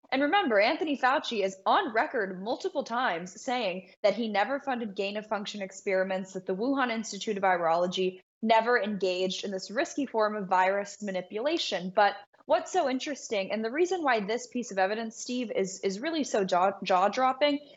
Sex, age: female, 10-29